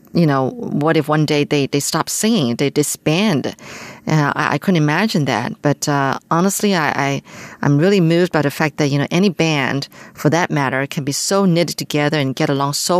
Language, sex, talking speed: German, female, 210 wpm